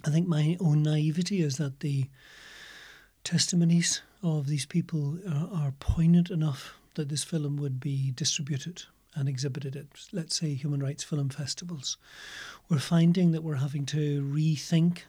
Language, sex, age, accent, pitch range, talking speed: English, male, 40-59, British, 140-165 Hz, 150 wpm